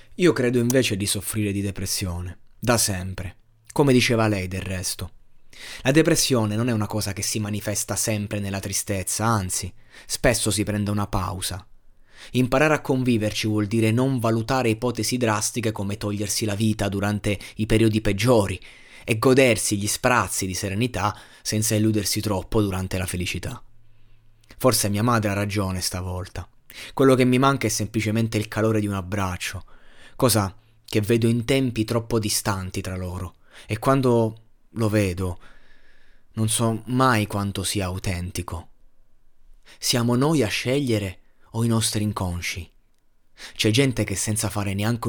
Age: 20-39